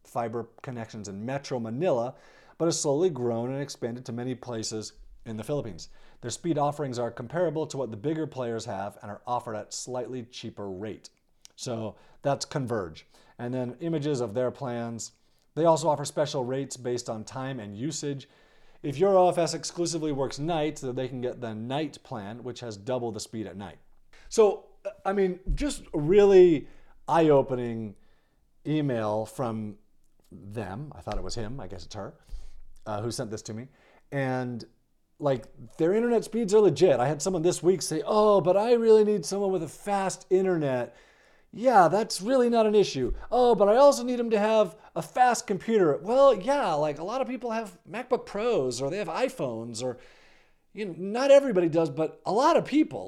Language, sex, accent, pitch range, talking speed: English, male, American, 120-195 Hz, 185 wpm